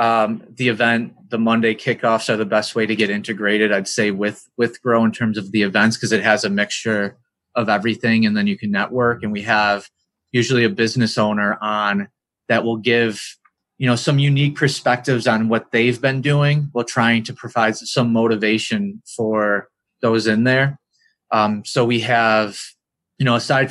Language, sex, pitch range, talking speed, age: Italian, male, 110-130 Hz, 185 wpm, 30-49